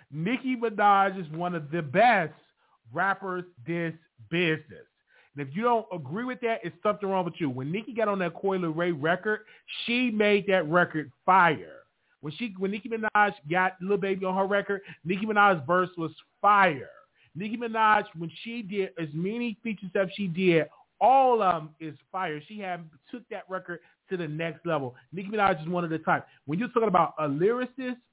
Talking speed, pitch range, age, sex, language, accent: 190 wpm, 165-210 Hz, 30-49, male, English, American